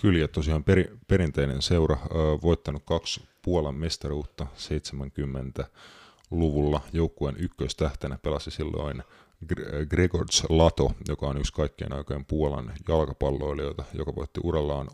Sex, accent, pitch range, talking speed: male, native, 70-85 Hz, 110 wpm